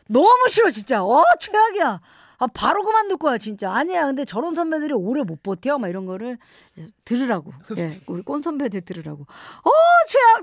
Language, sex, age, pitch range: Korean, female, 50-69, 200-310 Hz